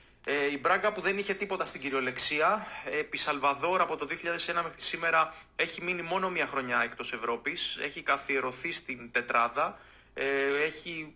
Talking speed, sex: 145 wpm, male